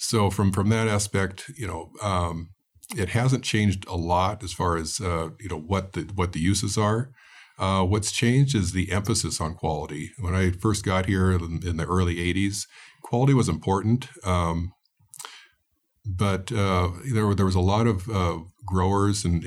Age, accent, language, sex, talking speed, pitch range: 50-69, American, English, male, 180 wpm, 85-105 Hz